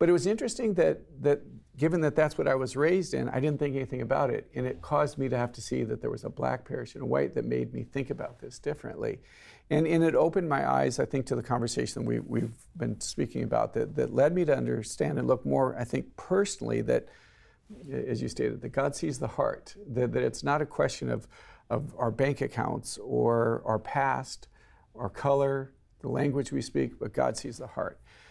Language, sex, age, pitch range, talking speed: English, male, 50-69, 115-145 Hz, 225 wpm